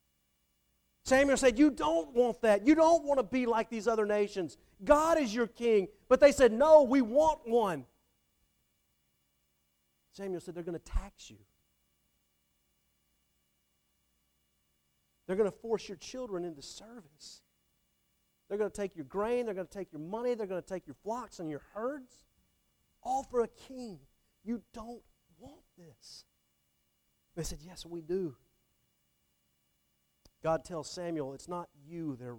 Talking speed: 150 wpm